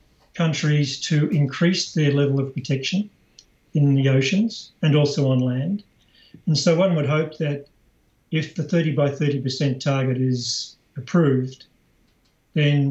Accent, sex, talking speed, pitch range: Australian, male, 135 wpm, 135-155 Hz